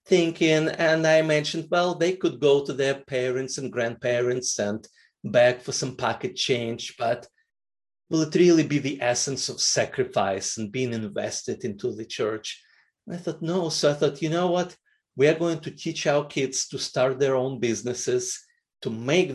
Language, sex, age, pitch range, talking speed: English, male, 30-49, 120-165 Hz, 175 wpm